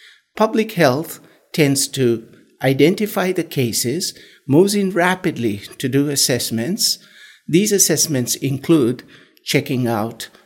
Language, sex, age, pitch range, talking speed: English, male, 60-79, 120-160 Hz, 105 wpm